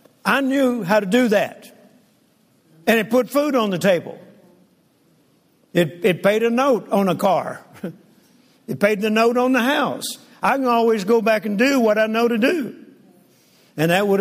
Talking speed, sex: 180 wpm, male